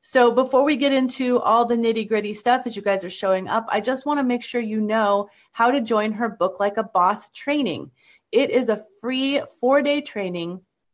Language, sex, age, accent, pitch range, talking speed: English, female, 30-49, American, 185-235 Hz, 220 wpm